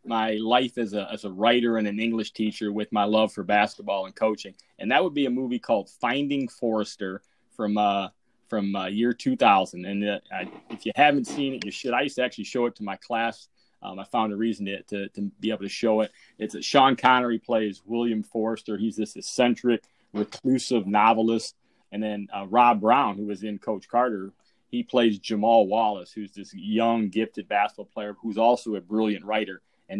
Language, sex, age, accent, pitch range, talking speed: English, male, 30-49, American, 105-115 Hz, 205 wpm